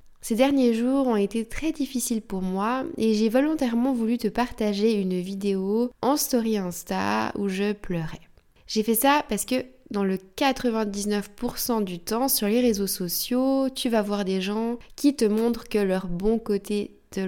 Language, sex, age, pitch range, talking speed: French, female, 20-39, 195-240 Hz, 175 wpm